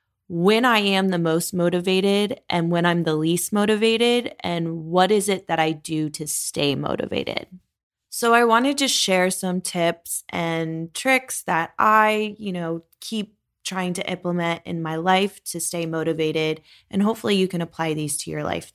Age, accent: 20-39, American